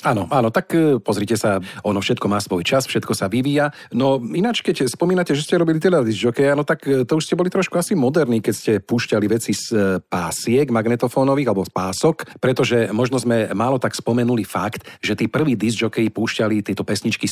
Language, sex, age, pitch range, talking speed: Slovak, male, 50-69, 105-140 Hz, 190 wpm